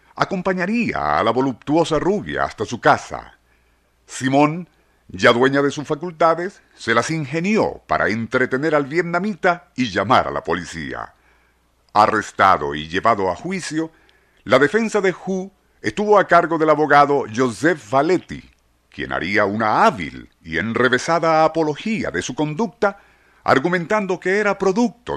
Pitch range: 115-170 Hz